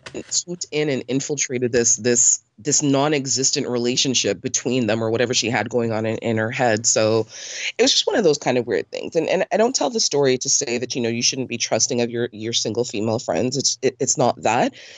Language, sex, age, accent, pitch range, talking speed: English, female, 30-49, American, 115-135 Hz, 235 wpm